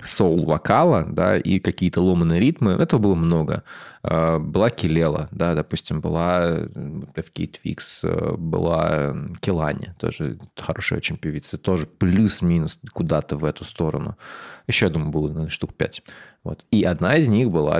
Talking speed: 135 wpm